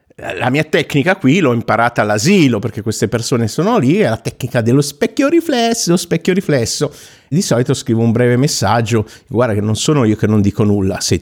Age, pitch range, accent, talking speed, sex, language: 50-69, 105-145 Hz, native, 195 wpm, male, Italian